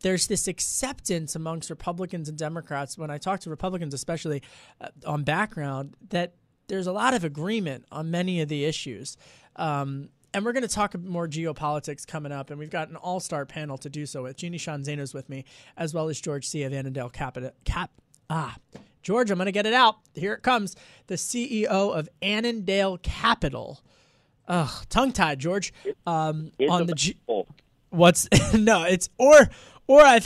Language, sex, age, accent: English, male, 20-39, American